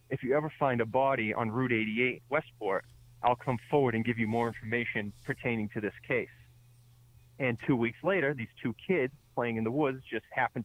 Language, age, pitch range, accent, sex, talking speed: English, 30-49, 115-130 Hz, American, male, 195 wpm